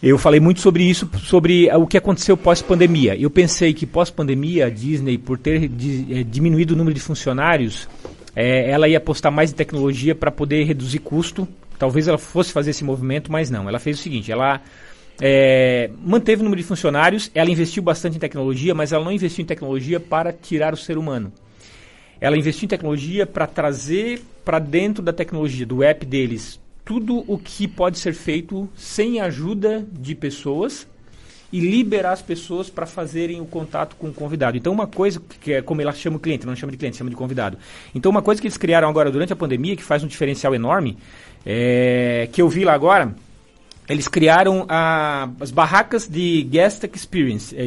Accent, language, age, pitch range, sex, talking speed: Brazilian, Portuguese, 40-59, 140-180 Hz, male, 195 wpm